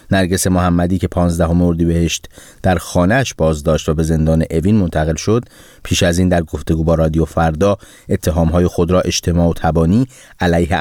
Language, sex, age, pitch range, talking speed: Persian, male, 30-49, 80-90 Hz, 165 wpm